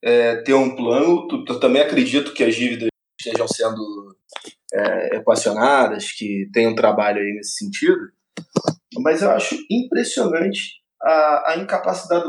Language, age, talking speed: Portuguese, 20-39, 135 wpm